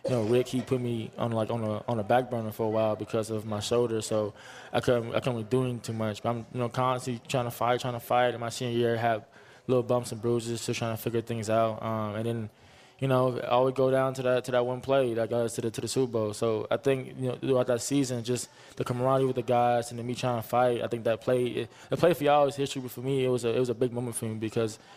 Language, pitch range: English, 115-130 Hz